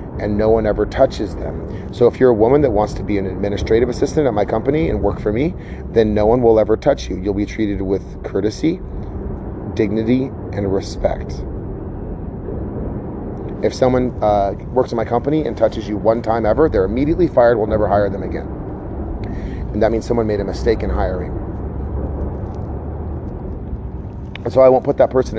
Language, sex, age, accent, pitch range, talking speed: English, male, 30-49, American, 95-115 Hz, 180 wpm